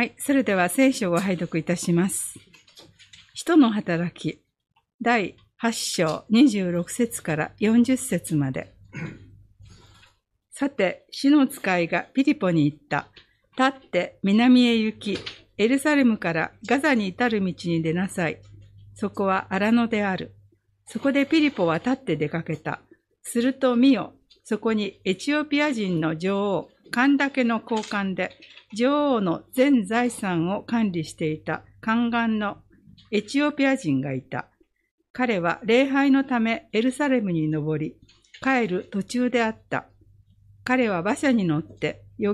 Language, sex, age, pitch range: Japanese, female, 50-69, 160-255 Hz